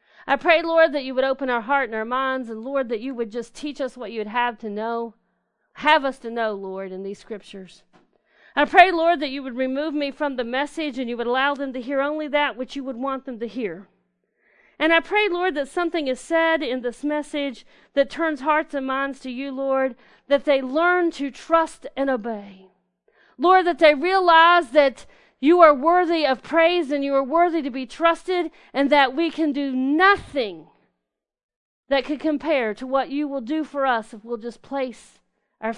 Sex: female